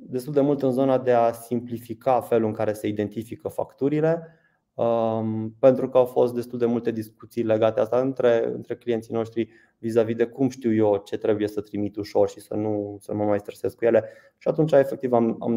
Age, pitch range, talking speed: 20-39, 105-125 Hz, 205 wpm